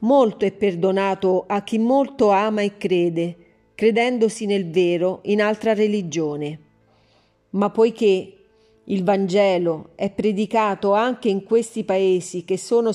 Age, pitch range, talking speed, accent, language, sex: 40-59, 180-220 Hz, 125 wpm, native, Italian, female